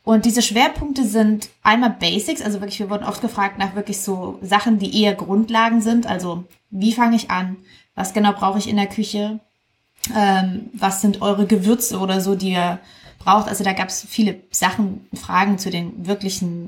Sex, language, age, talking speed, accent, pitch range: female, German, 20-39, 185 wpm, German, 195-220 Hz